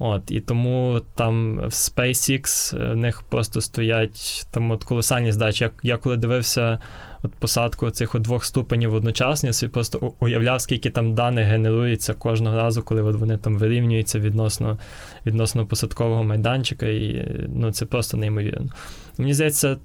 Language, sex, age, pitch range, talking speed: Ukrainian, male, 20-39, 110-125 Hz, 150 wpm